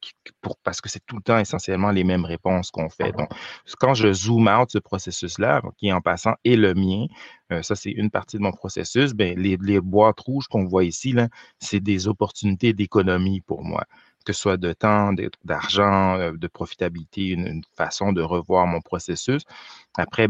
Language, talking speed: French, 195 wpm